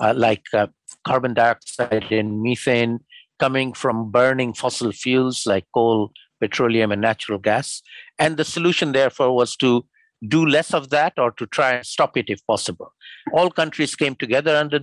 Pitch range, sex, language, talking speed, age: 120-150 Hz, male, English, 165 wpm, 50-69